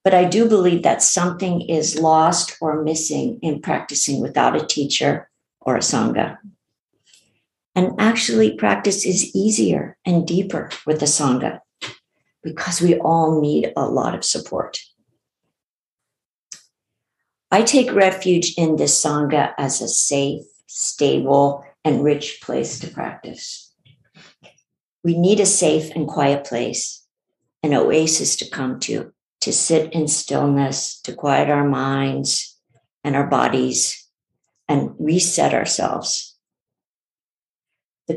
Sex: female